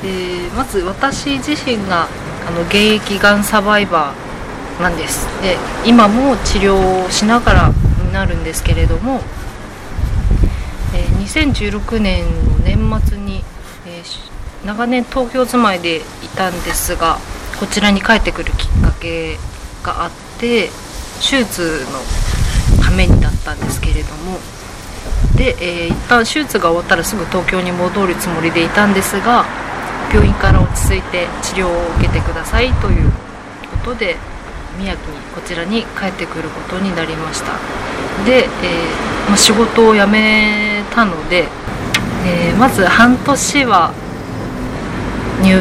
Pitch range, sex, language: 130-215 Hz, female, Japanese